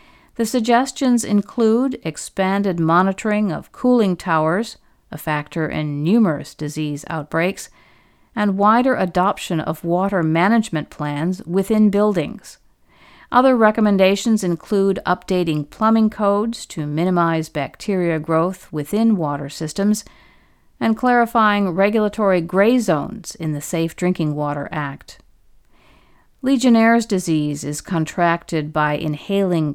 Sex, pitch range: female, 160-210 Hz